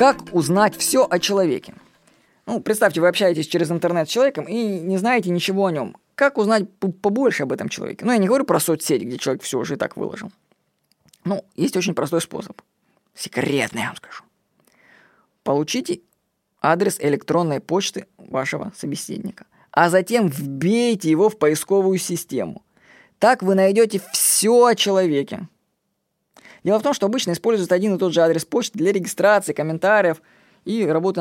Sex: female